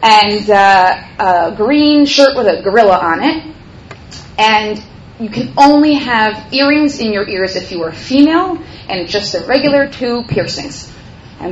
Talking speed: 155 wpm